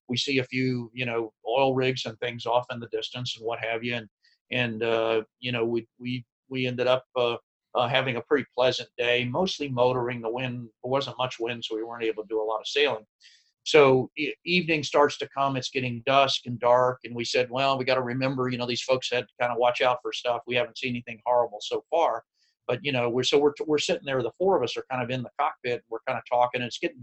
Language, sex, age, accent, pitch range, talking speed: English, male, 50-69, American, 120-145 Hz, 260 wpm